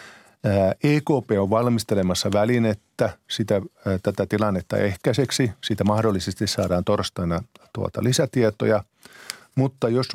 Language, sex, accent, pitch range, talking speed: Finnish, male, native, 95-115 Hz, 85 wpm